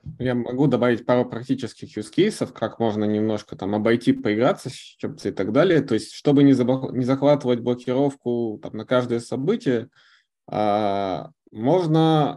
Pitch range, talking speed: 120-145 Hz, 145 wpm